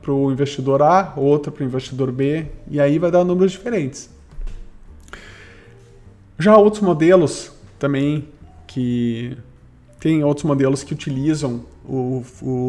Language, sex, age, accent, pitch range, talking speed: Portuguese, male, 20-39, Brazilian, 130-175 Hz, 120 wpm